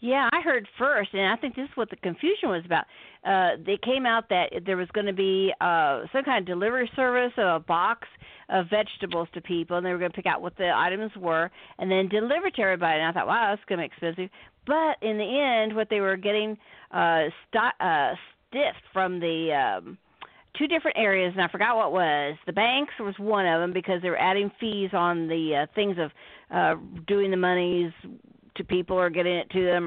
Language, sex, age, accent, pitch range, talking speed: English, female, 50-69, American, 180-230 Hz, 225 wpm